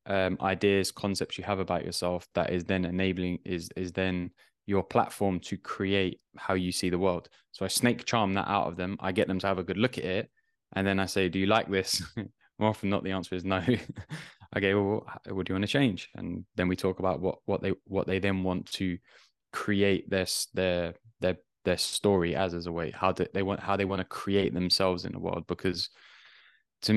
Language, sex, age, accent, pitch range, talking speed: English, male, 10-29, British, 90-105 Hz, 225 wpm